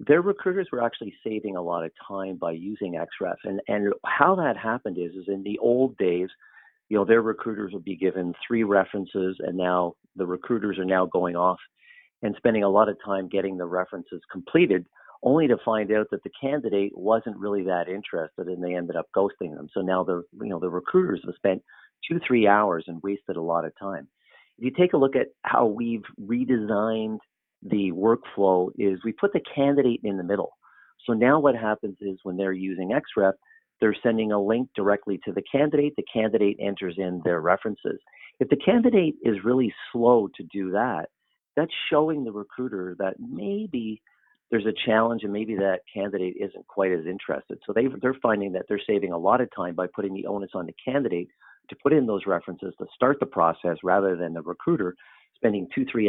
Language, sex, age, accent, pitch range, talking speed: English, male, 40-59, American, 95-120 Hz, 200 wpm